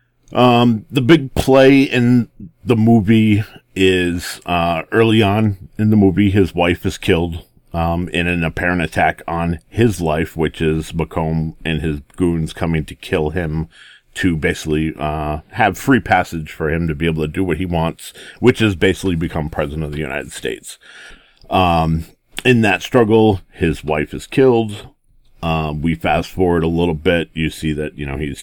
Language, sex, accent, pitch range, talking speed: English, male, American, 80-100 Hz, 175 wpm